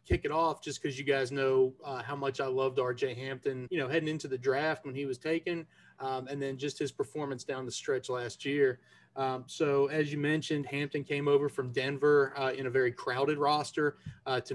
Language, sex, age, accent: English, male, 30-49, American